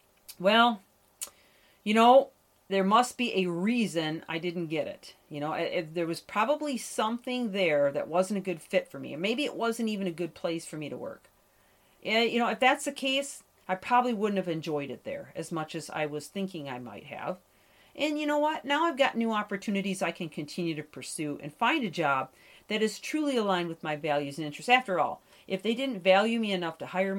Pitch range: 165-230 Hz